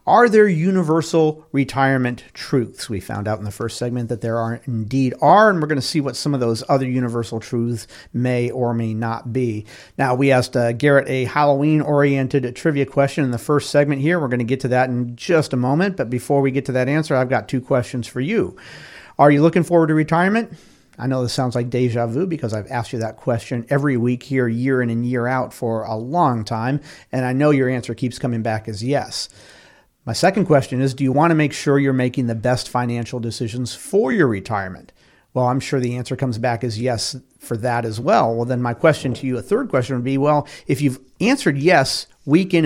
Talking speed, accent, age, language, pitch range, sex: 230 wpm, American, 40-59, English, 120-150 Hz, male